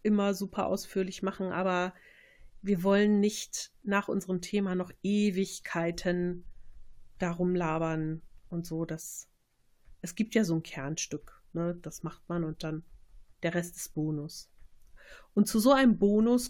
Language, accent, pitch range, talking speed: German, German, 180-230 Hz, 140 wpm